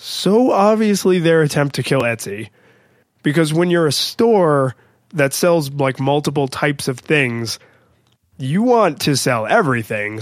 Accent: American